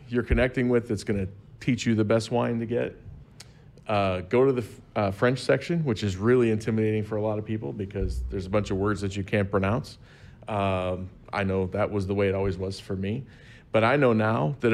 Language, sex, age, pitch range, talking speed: English, male, 40-59, 100-120 Hz, 225 wpm